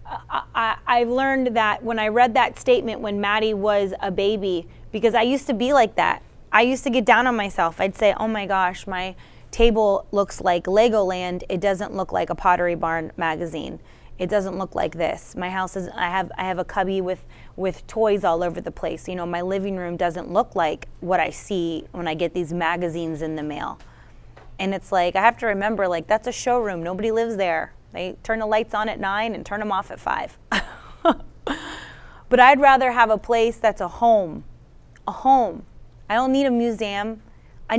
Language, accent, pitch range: English, American, 185-235 Hz